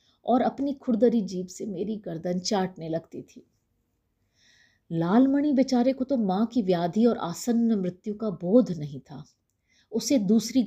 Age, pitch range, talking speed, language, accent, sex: 50-69, 185-250 Hz, 145 wpm, Hindi, native, female